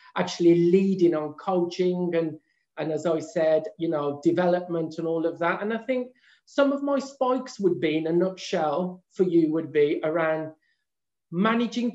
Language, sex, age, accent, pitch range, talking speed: English, male, 40-59, British, 160-195 Hz, 170 wpm